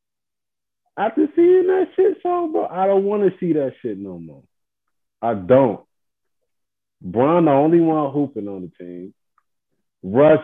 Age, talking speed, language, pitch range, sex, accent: 30-49, 150 wpm, English, 115-185 Hz, male, American